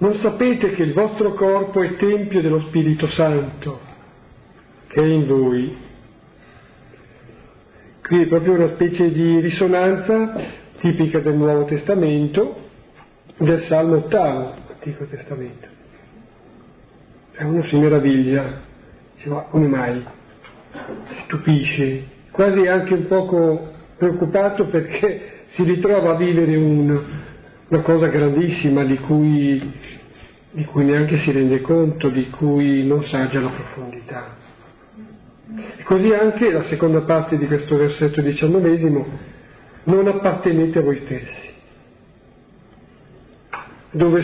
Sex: male